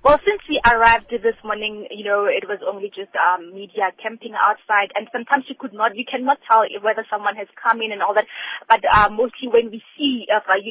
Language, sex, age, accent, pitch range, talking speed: English, female, 20-39, South African, 210-245 Hz, 225 wpm